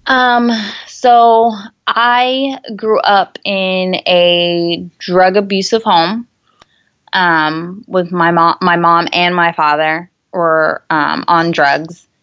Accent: American